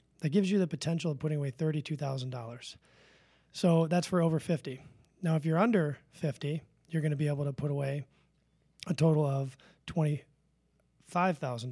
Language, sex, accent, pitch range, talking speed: English, male, American, 140-165 Hz, 175 wpm